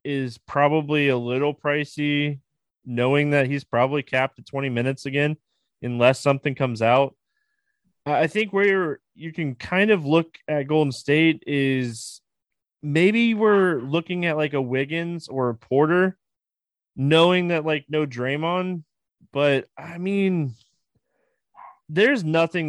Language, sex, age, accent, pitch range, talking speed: English, male, 20-39, American, 120-155 Hz, 135 wpm